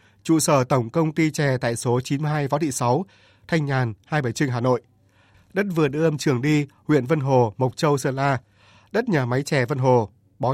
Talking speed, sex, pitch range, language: 215 wpm, male, 120-150 Hz, Vietnamese